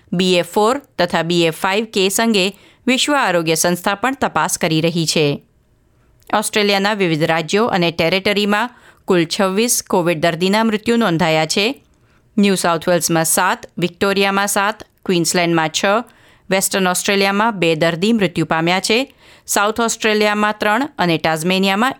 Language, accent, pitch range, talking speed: Gujarati, native, 170-220 Hz, 125 wpm